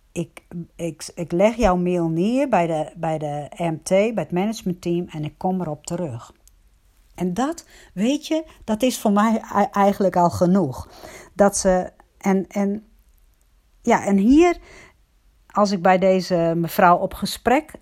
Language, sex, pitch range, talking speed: Dutch, female, 160-200 Hz, 150 wpm